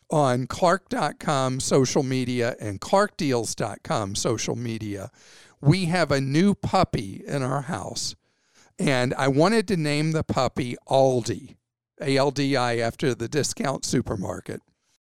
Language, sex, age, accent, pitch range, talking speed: English, male, 50-69, American, 130-170 Hz, 115 wpm